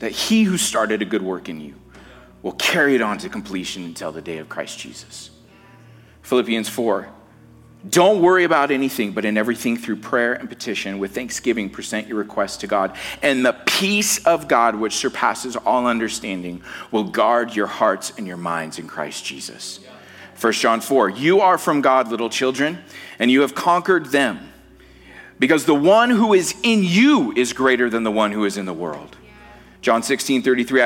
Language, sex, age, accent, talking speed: English, male, 40-59, American, 185 wpm